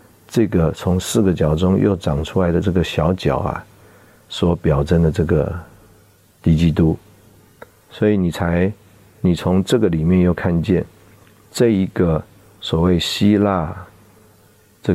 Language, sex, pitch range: Chinese, male, 80-95 Hz